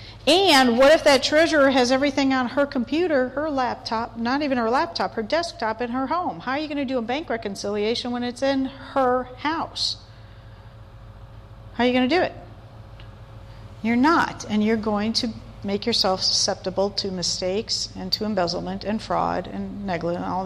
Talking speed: 180 wpm